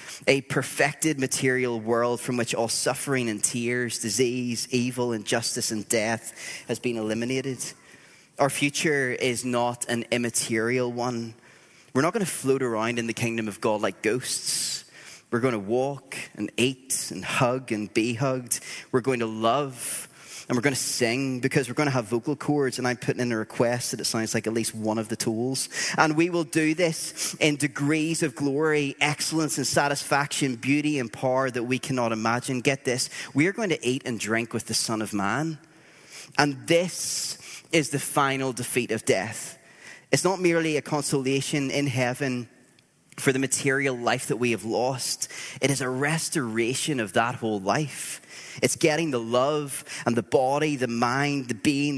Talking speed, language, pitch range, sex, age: 180 wpm, English, 120-145 Hz, male, 20-39